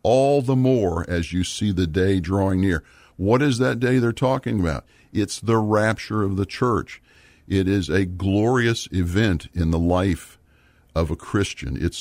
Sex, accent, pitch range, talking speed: male, American, 80-105 Hz, 175 wpm